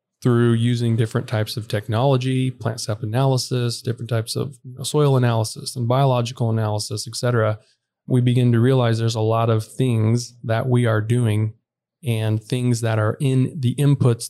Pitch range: 110-125 Hz